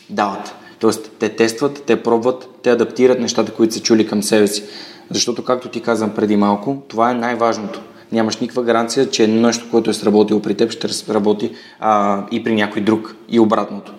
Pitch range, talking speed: 110-130 Hz, 185 wpm